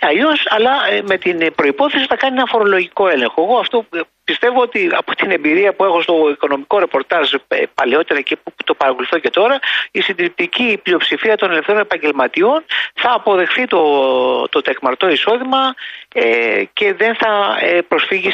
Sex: male